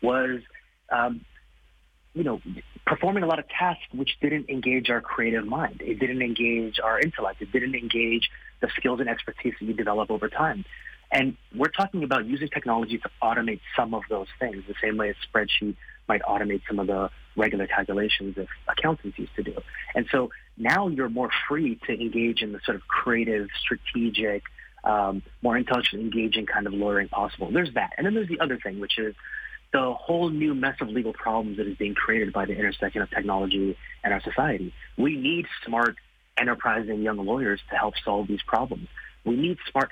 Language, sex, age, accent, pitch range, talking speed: English, male, 30-49, American, 105-130 Hz, 190 wpm